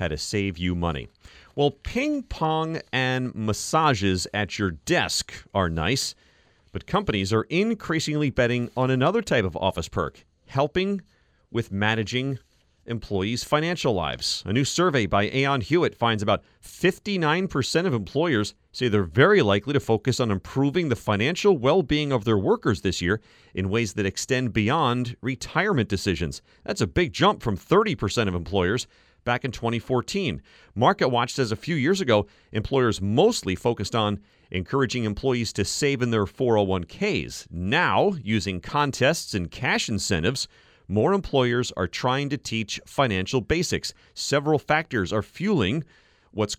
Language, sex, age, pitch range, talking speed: English, male, 40-59, 105-140 Hz, 145 wpm